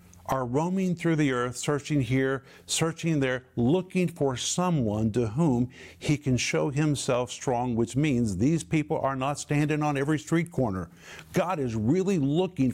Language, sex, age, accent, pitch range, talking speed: English, male, 50-69, American, 125-160 Hz, 160 wpm